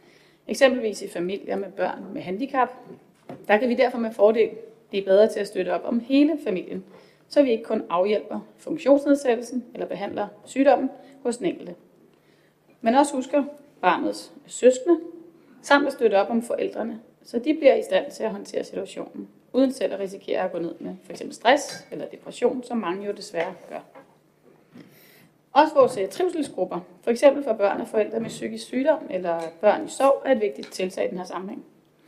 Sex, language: female, Danish